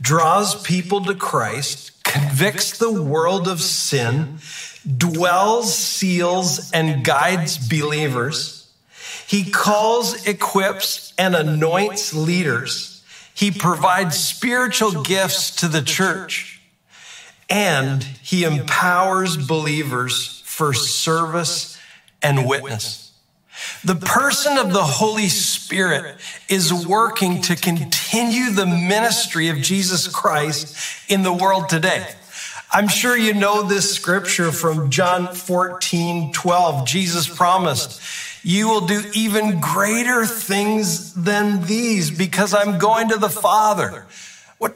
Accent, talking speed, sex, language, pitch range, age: American, 110 wpm, male, English, 160-205 Hz, 50-69